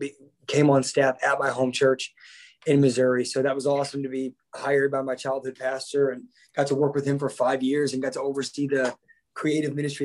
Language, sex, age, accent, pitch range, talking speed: English, male, 20-39, American, 130-140 Hz, 215 wpm